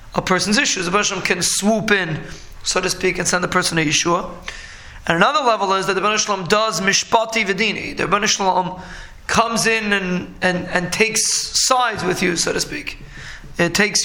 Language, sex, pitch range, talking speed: English, male, 180-215 Hz, 190 wpm